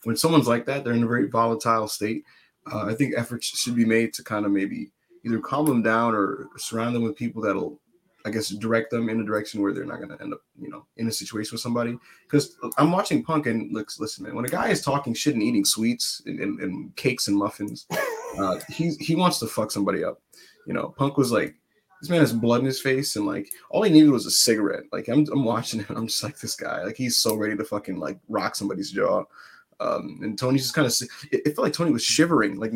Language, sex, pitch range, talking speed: English, male, 110-145 Hz, 250 wpm